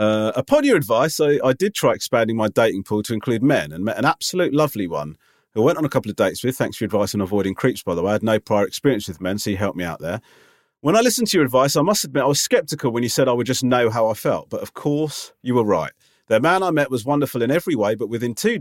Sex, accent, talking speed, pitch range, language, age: male, British, 300 wpm, 105-145 Hz, English, 30-49